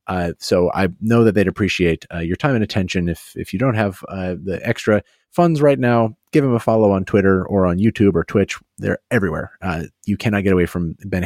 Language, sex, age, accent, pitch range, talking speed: English, male, 30-49, American, 90-120 Hz, 230 wpm